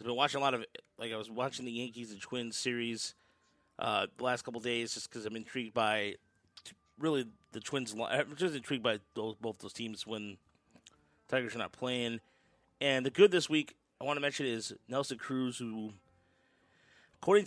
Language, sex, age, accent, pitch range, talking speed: English, male, 30-49, American, 110-130 Hz, 190 wpm